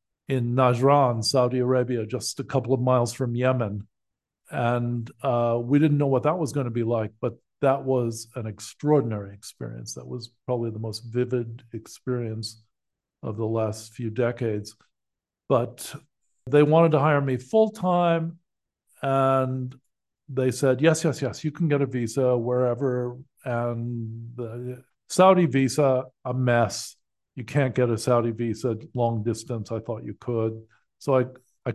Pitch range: 115-135 Hz